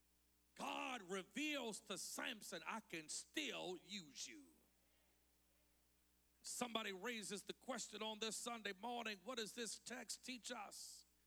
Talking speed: 120 wpm